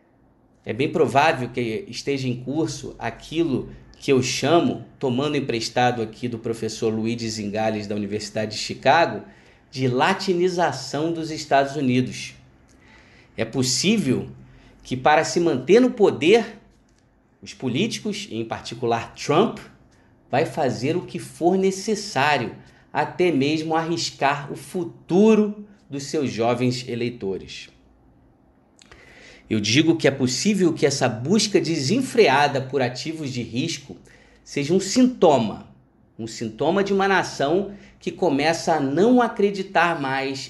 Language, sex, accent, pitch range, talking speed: Portuguese, male, Brazilian, 115-165 Hz, 120 wpm